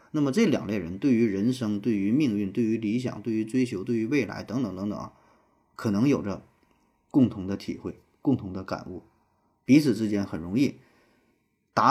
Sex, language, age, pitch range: male, Chinese, 20-39, 95-120 Hz